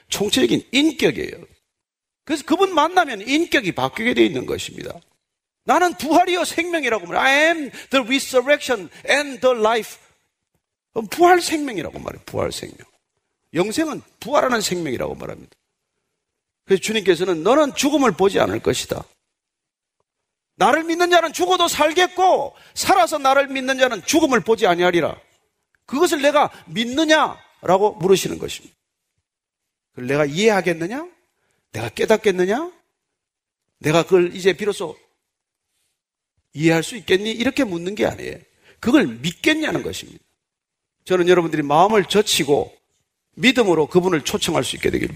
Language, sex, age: Korean, male, 40-59